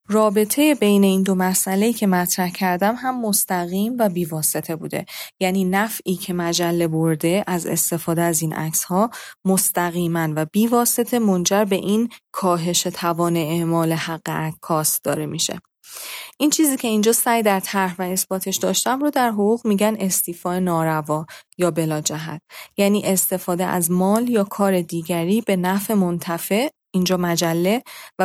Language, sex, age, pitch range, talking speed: Persian, female, 30-49, 170-205 Hz, 145 wpm